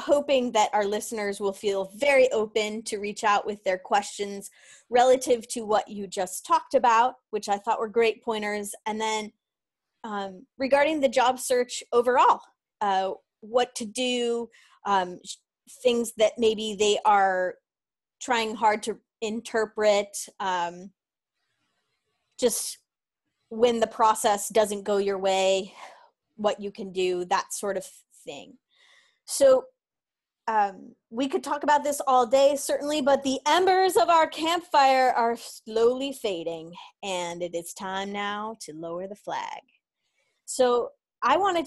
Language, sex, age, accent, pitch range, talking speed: English, female, 20-39, American, 200-260 Hz, 140 wpm